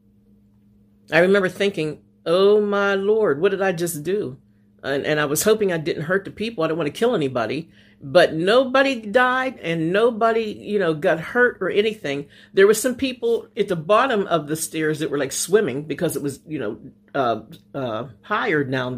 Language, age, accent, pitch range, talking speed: English, 50-69, American, 135-200 Hz, 195 wpm